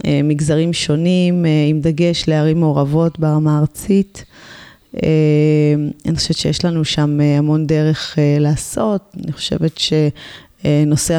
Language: Hebrew